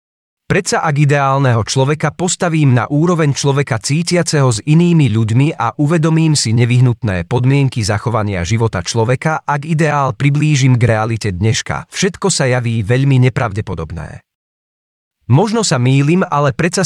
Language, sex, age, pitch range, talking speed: Czech, male, 40-59, 115-160 Hz, 130 wpm